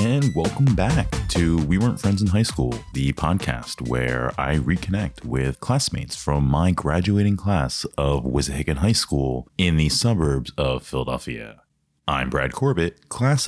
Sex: male